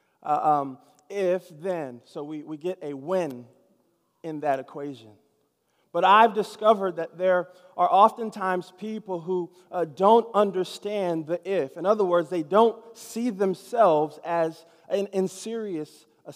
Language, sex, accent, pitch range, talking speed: English, male, American, 180-230 Hz, 145 wpm